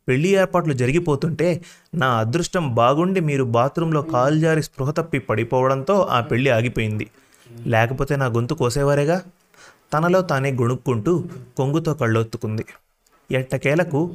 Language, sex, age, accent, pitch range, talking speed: Telugu, male, 30-49, native, 120-155 Hz, 110 wpm